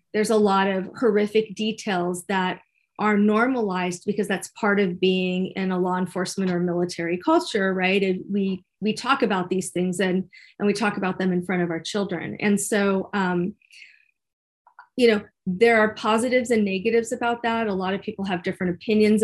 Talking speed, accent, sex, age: 185 wpm, American, female, 30-49